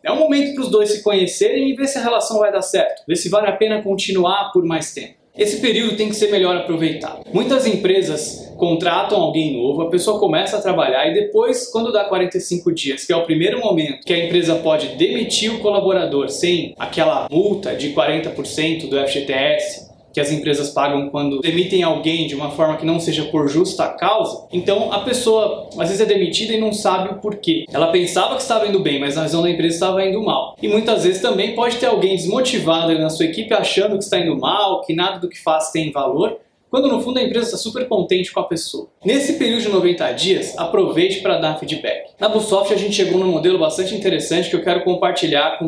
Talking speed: 220 wpm